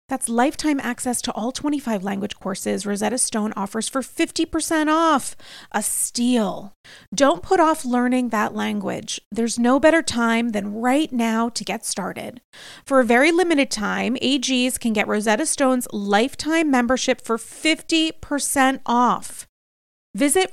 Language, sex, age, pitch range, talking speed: English, female, 30-49, 220-285 Hz, 140 wpm